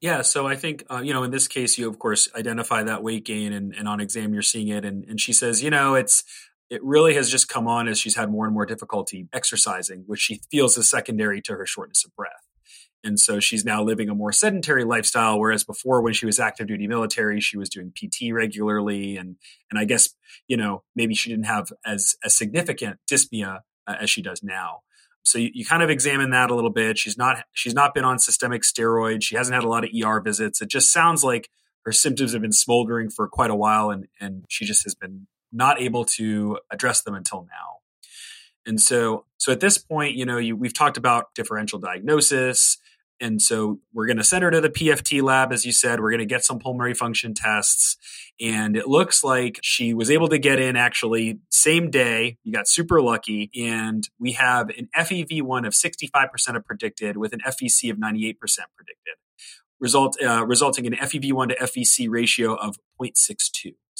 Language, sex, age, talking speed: English, male, 30-49, 210 wpm